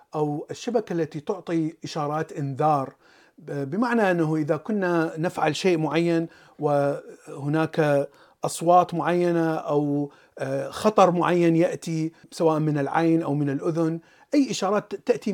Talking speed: 115 wpm